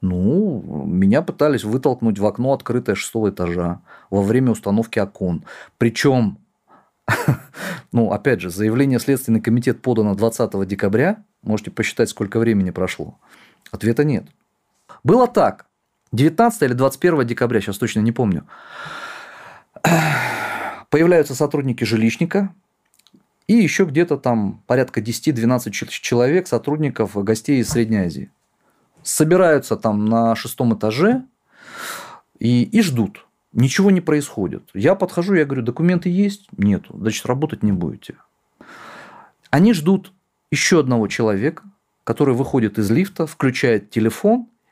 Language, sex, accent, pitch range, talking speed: Russian, male, native, 115-165 Hz, 120 wpm